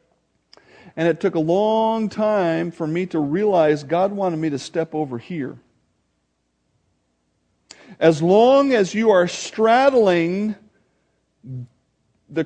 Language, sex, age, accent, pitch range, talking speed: English, male, 50-69, American, 155-210 Hz, 115 wpm